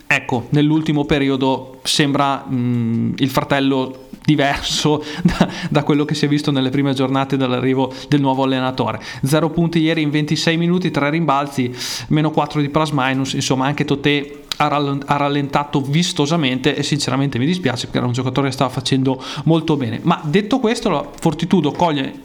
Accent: native